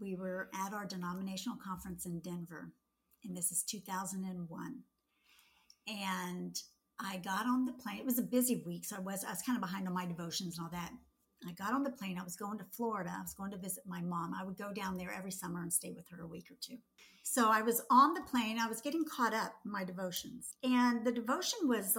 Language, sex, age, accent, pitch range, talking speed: English, female, 50-69, American, 190-255 Hz, 235 wpm